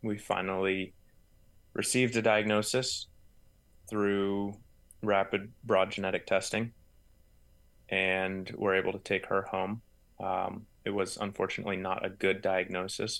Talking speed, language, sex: 115 wpm, English, male